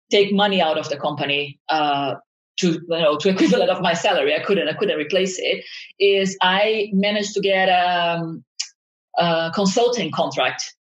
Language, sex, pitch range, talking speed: English, female, 180-220 Hz, 165 wpm